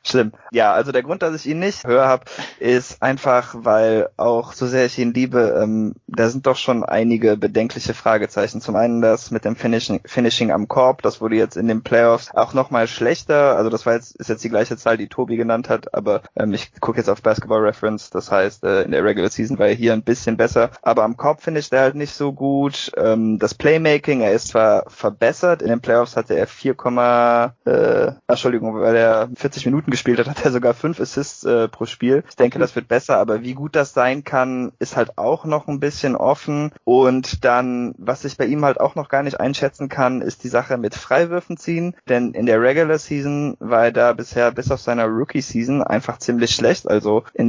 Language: German